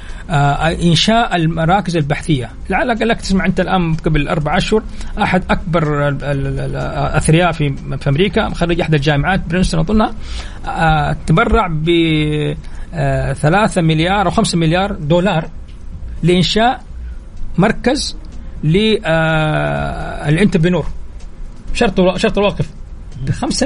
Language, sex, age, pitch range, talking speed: Arabic, male, 40-59, 150-205 Hz, 105 wpm